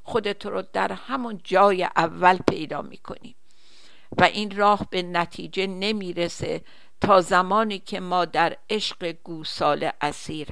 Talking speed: 125 wpm